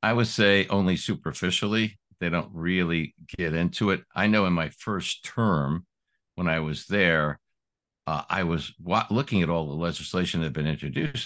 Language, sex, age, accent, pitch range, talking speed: English, male, 60-79, American, 80-100 Hz, 180 wpm